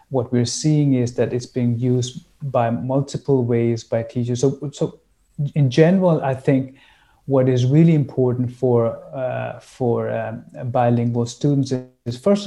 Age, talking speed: 30-49, 150 wpm